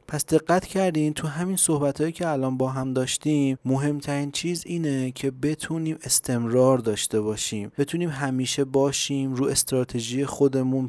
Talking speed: 140 wpm